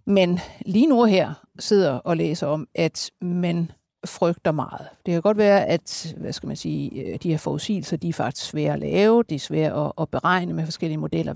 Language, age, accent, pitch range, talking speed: Danish, 60-79, native, 165-210 Hz, 200 wpm